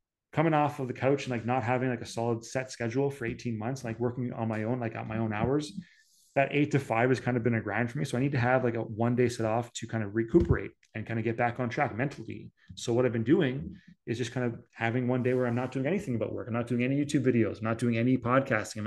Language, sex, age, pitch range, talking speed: English, male, 30-49, 115-140 Hz, 295 wpm